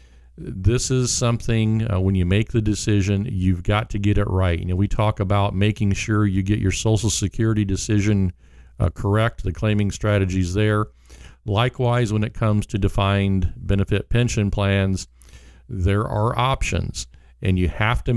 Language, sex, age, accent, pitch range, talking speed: English, male, 50-69, American, 95-110 Hz, 165 wpm